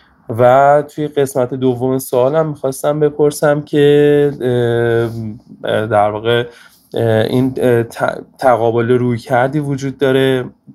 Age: 20-39